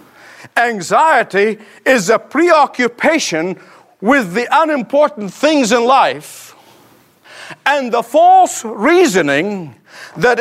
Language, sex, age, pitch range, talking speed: English, male, 50-69, 210-300 Hz, 85 wpm